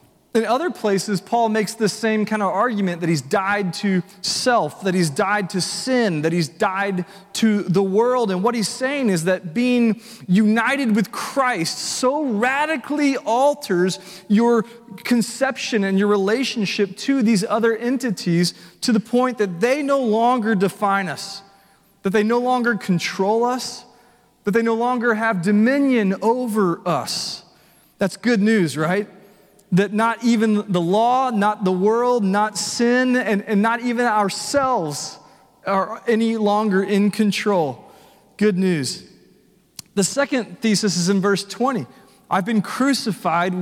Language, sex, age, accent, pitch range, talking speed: English, male, 30-49, American, 195-235 Hz, 145 wpm